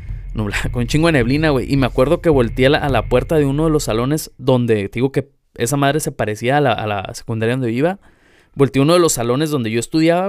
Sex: male